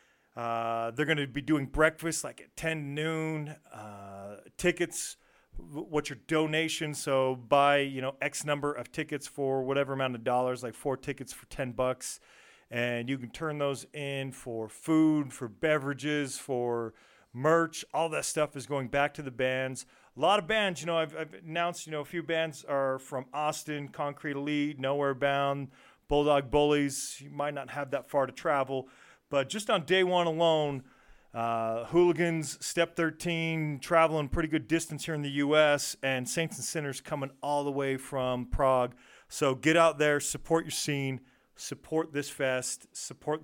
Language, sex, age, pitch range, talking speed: English, male, 40-59, 130-155 Hz, 175 wpm